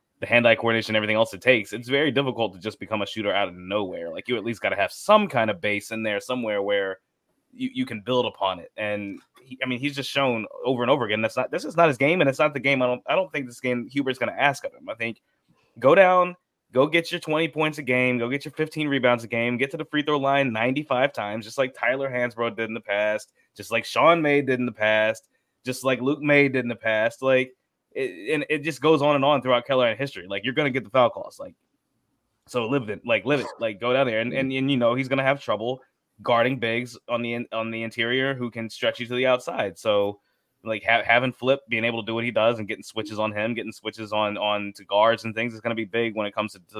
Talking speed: 275 wpm